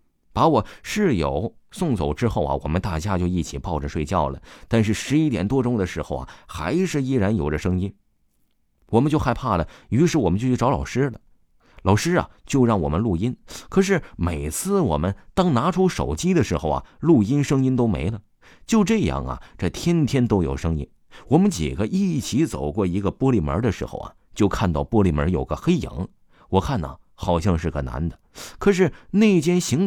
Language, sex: Chinese, male